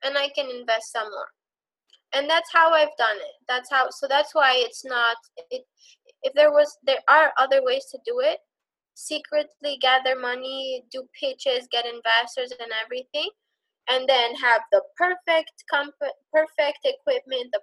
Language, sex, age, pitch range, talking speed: English, female, 20-39, 230-310 Hz, 155 wpm